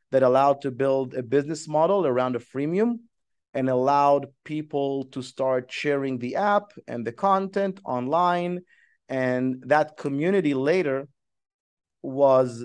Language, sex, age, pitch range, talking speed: English, male, 30-49, 130-160 Hz, 130 wpm